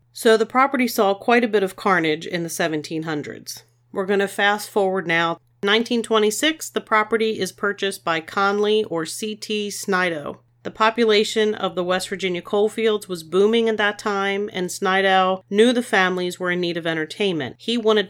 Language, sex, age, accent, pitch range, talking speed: English, female, 40-59, American, 165-205 Hz, 175 wpm